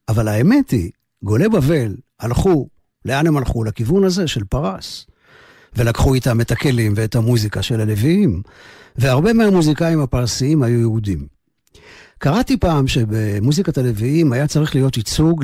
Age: 50-69